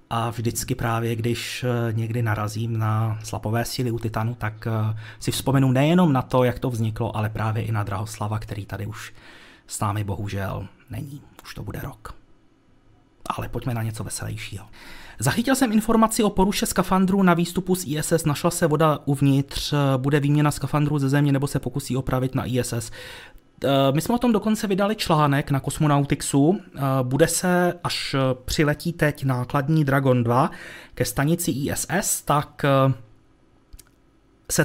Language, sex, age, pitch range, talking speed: Czech, male, 30-49, 115-150 Hz, 150 wpm